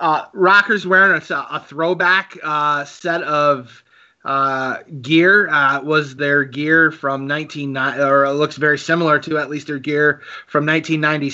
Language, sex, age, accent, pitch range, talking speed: English, male, 30-49, American, 135-150 Hz, 155 wpm